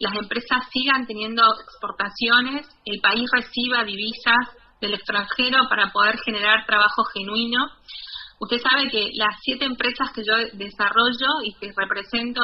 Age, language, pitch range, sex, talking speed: 30-49, Spanish, 215-260 Hz, female, 135 wpm